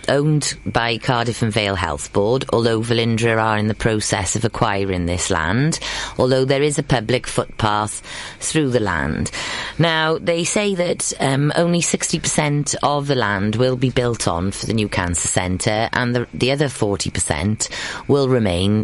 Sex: female